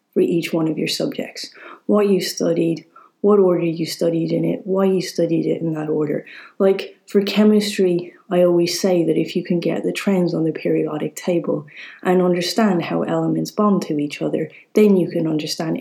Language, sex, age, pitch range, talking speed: English, female, 30-49, 165-200 Hz, 195 wpm